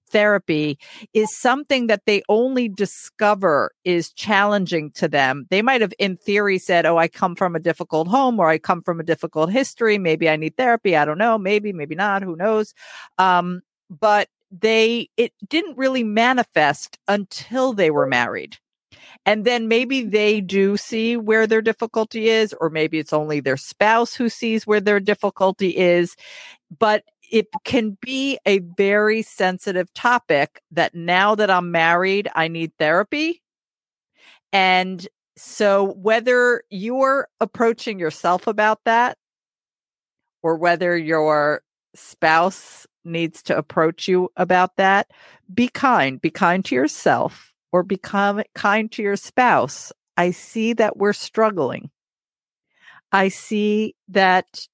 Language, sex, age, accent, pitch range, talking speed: English, female, 50-69, American, 180-225 Hz, 140 wpm